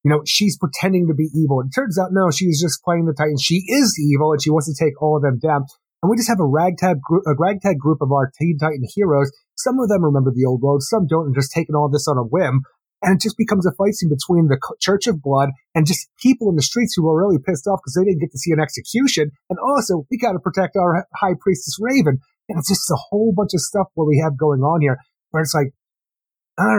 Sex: male